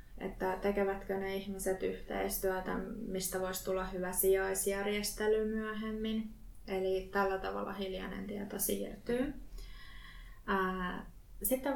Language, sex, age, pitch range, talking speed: Finnish, female, 20-39, 185-200 Hz, 90 wpm